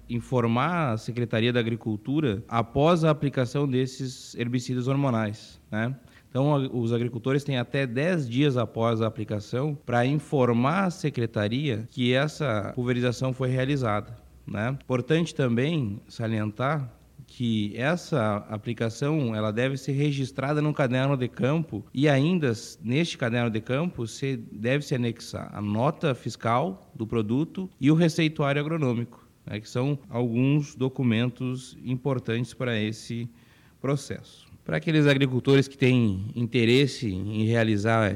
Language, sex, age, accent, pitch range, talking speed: Portuguese, male, 20-39, Brazilian, 110-140 Hz, 125 wpm